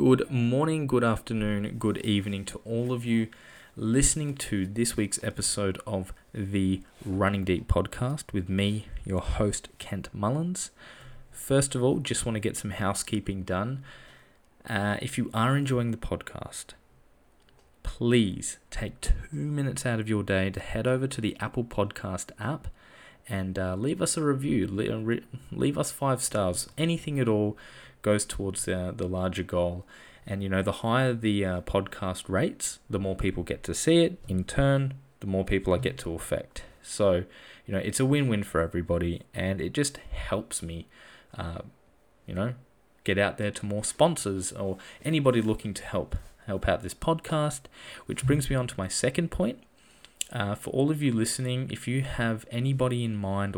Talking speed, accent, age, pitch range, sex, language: 170 wpm, Australian, 20-39, 95-130 Hz, male, English